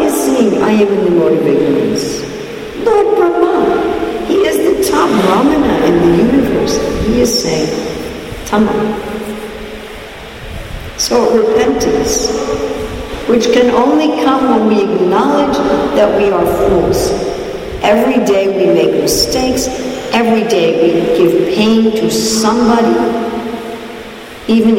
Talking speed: 115 wpm